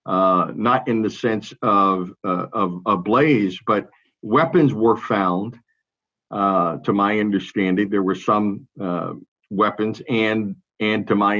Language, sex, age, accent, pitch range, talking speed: English, male, 50-69, American, 100-130 Hz, 145 wpm